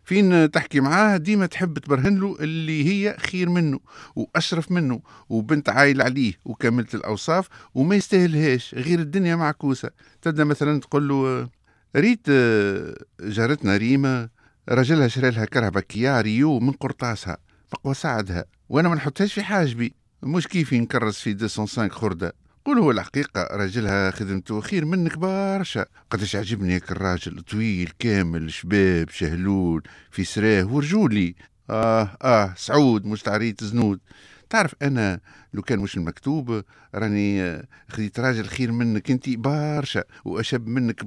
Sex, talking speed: male, 130 wpm